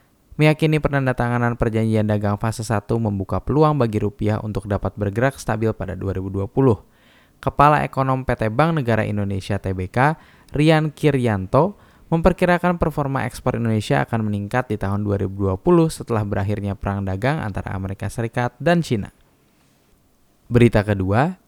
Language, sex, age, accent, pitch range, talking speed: Indonesian, male, 10-29, native, 105-140 Hz, 125 wpm